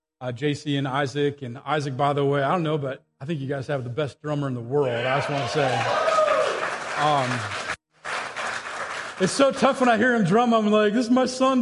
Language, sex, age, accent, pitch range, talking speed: English, male, 30-49, American, 150-210 Hz, 225 wpm